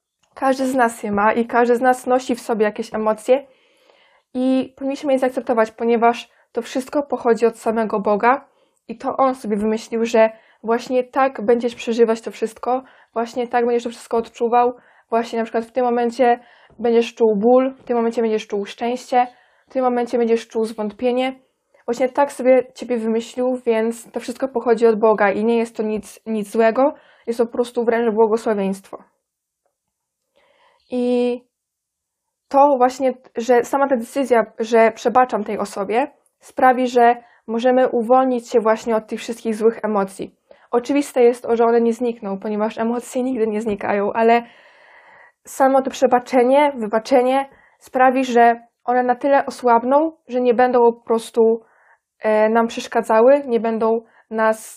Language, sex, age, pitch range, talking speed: Polish, female, 20-39, 225-255 Hz, 155 wpm